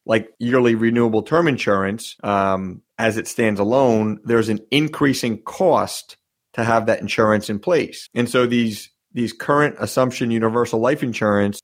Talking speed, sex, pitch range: 150 wpm, male, 105-125 Hz